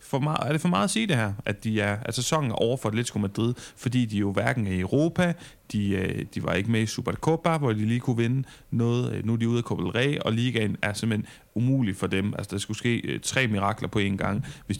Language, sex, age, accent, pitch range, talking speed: Danish, male, 30-49, native, 105-135 Hz, 265 wpm